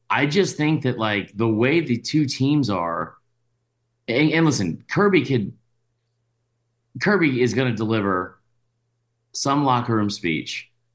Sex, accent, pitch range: male, American, 100-125 Hz